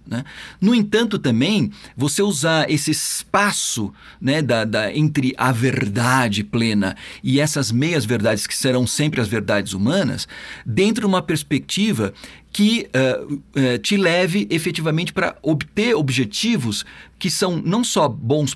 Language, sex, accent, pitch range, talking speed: Portuguese, male, Brazilian, 125-185 Hz, 135 wpm